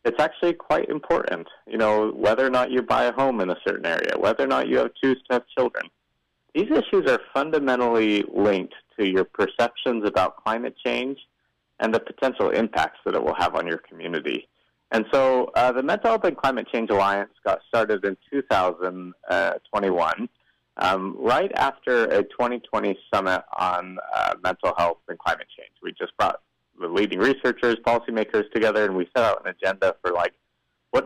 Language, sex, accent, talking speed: English, male, American, 175 wpm